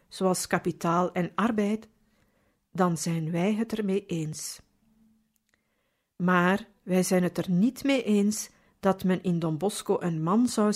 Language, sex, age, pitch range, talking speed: Dutch, female, 50-69, 180-220 Hz, 145 wpm